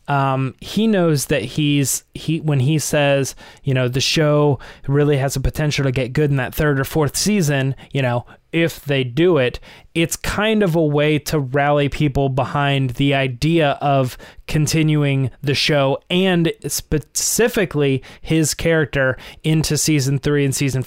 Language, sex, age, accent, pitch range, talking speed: English, male, 20-39, American, 130-155 Hz, 160 wpm